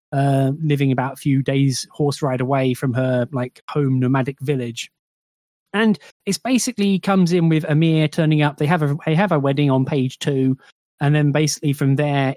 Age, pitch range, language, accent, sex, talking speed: 20-39, 135-160 Hz, English, British, male, 190 wpm